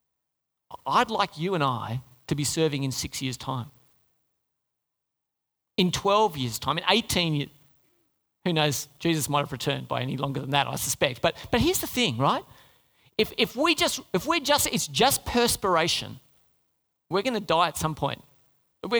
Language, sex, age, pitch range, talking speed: English, male, 40-59, 135-190 Hz, 175 wpm